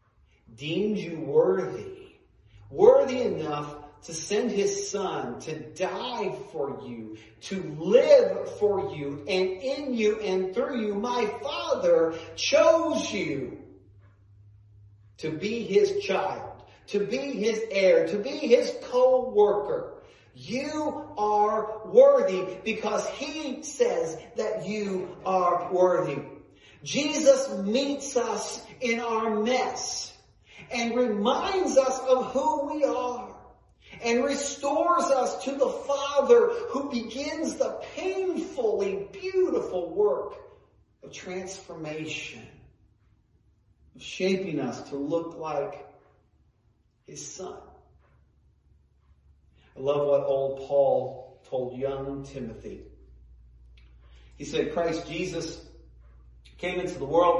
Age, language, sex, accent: 40-59, English, male, American